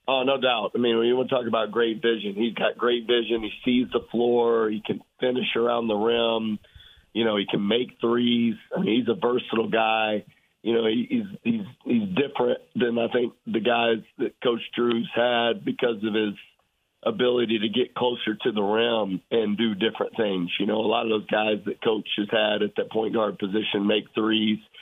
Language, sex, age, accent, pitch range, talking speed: English, male, 50-69, American, 110-125 Hz, 210 wpm